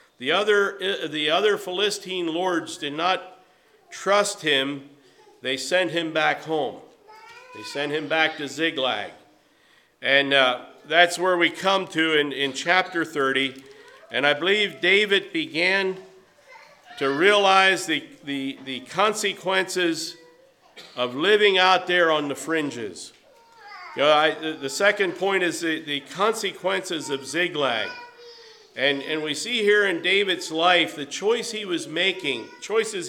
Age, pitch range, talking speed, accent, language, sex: 50-69, 150-200 Hz, 140 wpm, American, English, male